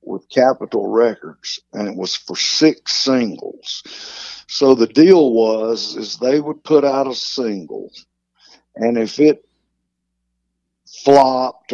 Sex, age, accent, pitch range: male, 60-79, American, 110-135 Hz